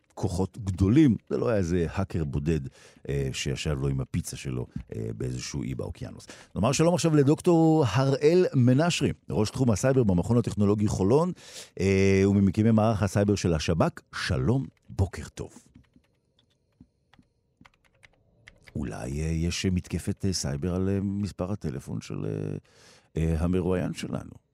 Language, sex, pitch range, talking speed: Hebrew, male, 90-140 Hz, 130 wpm